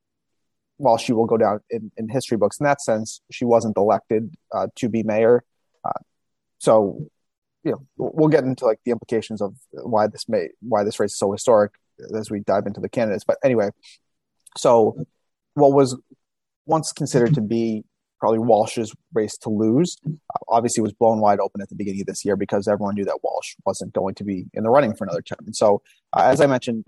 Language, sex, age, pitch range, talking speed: English, male, 30-49, 105-125 Hz, 205 wpm